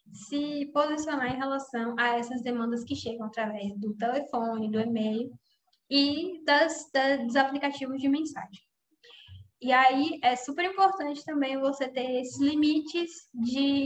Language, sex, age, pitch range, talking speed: Portuguese, female, 10-29, 235-275 Hz, 140 wpm